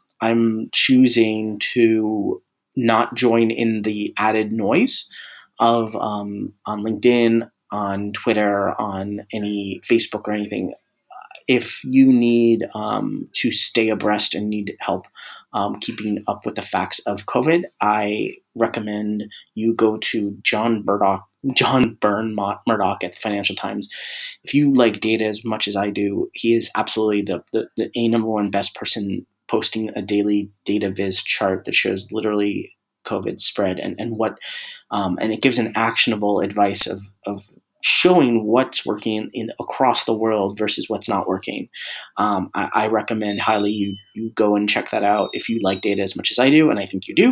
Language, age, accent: English, 30-49, American